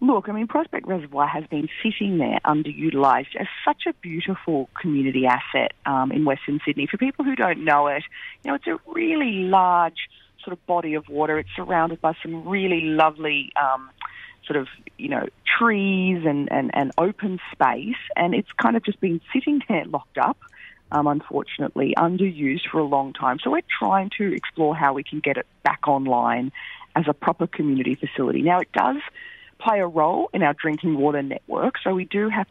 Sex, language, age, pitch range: female, English, 30-49, 145-205 Hz